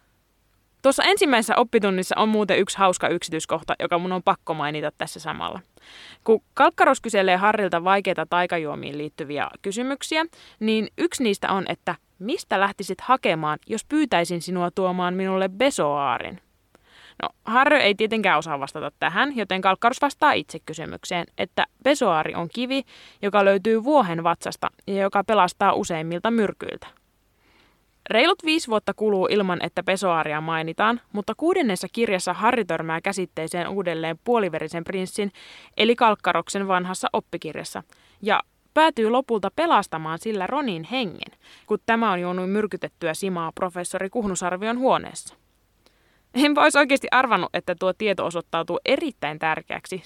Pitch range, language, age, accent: 170-230 Hz, Finnish, 20-39, native